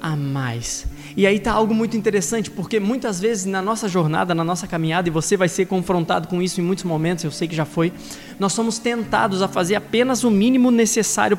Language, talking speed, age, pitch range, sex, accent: Portuguese, 215 wpm, 20-39, 175-220 Hz, male, Brazilian